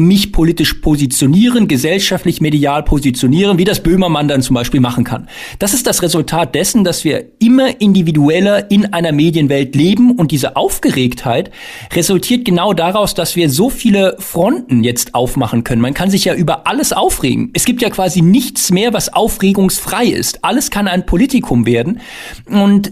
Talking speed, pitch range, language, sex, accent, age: 165 wpm, 145-195 Hz, German, male, German, 40-59